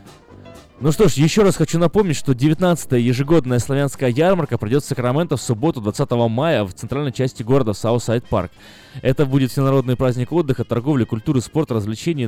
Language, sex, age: Russian, male, 20-39